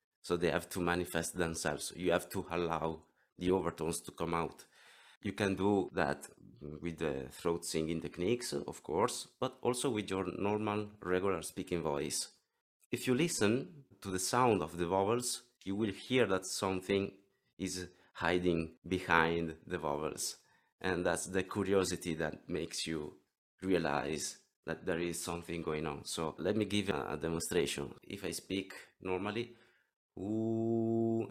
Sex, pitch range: male, 85-110 Hz